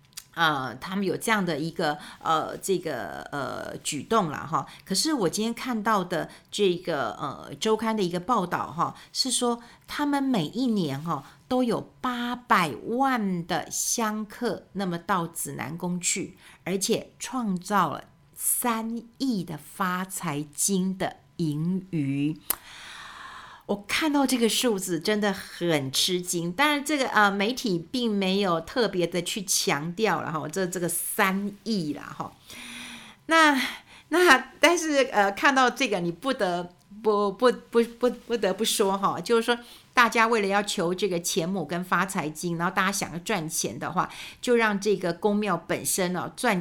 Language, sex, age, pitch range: Chinese, female, 50-69, 175-230 Hz